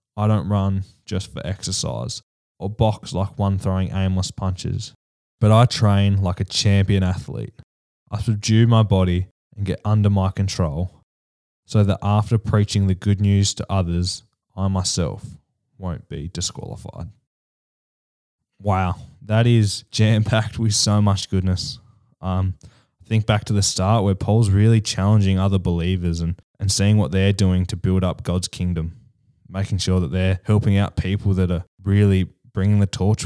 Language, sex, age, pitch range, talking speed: English, male, 10-29, 95-110 Hz, 155 wpm